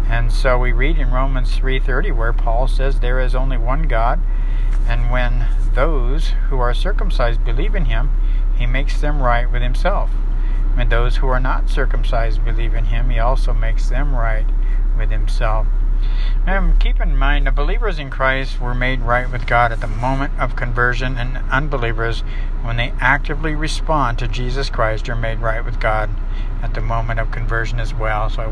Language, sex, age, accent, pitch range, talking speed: English, male, 60-79, American, 115-130 Hz, 180 wpm